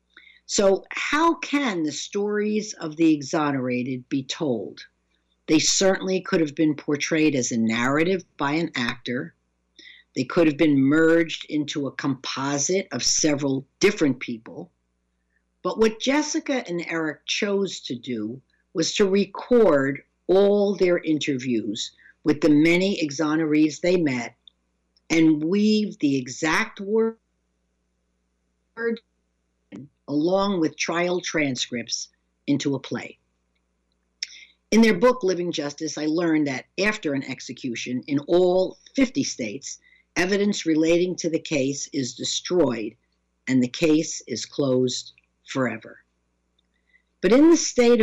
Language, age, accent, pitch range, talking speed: English, 50-69, American, 120-180 Hz, 120 wpm